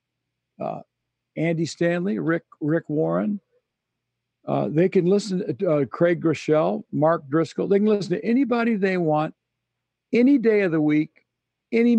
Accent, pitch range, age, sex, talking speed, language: American, 155-200 Hz, 60-79, male, 140 wpm, English